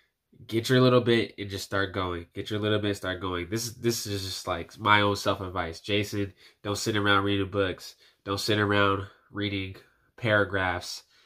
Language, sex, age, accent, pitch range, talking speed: English, male, 10-29, American, 95-105 Hz, 185 wpm